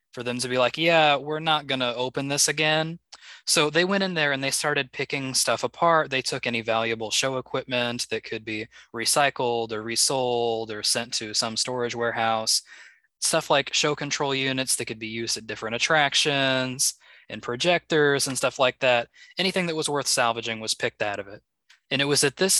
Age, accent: 20-39, American